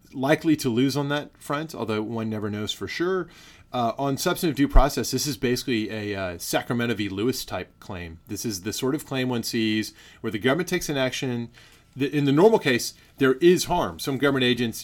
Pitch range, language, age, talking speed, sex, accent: 105-135 Hz, English, 30-49, 210 wpm, male, American